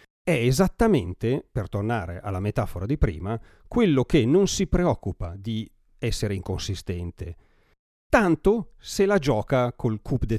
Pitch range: 95-125 Hz